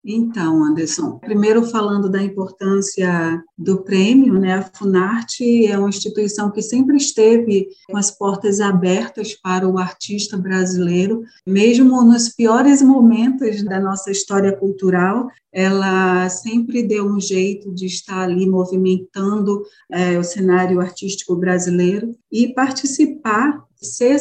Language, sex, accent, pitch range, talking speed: Portuguese, female, Brazilian, 185-215 Hz, 125 wpm